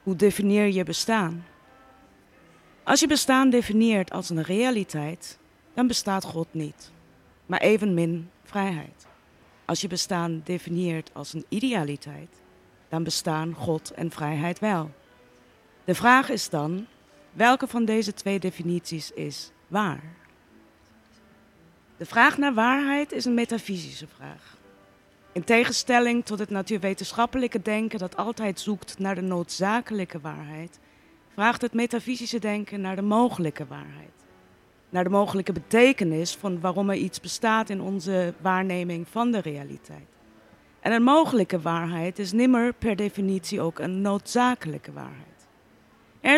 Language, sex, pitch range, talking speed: Dutch, female, 165-225 Hz, 130 wpm